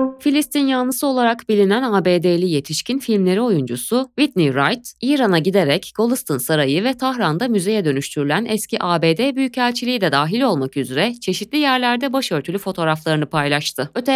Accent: native